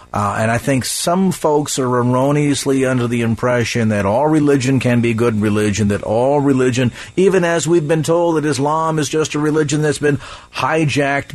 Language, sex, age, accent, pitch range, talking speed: English, male, 50-69, American, 125-155 Hz, 185 wpm